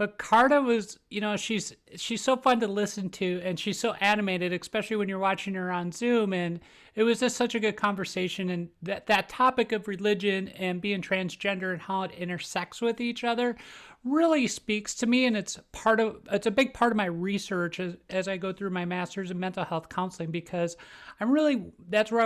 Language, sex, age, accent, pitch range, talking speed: English, male, 40-59, American, 185-235 Hz, 210 wpm